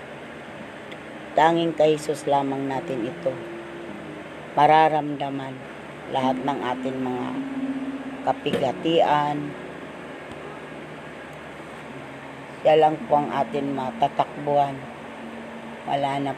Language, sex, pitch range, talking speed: Filipino, female, 135-155 Hz, 65 wpm